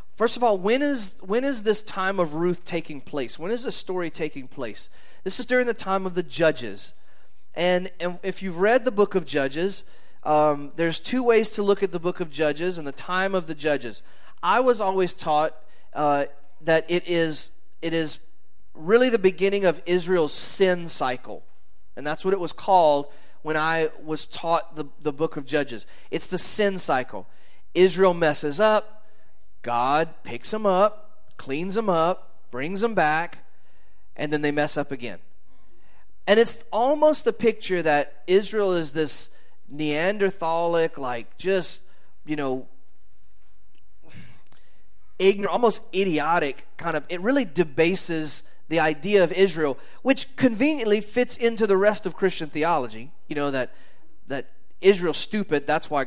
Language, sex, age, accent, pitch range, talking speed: English, male, 30-49, American, 145-195 Hz, 160 wpm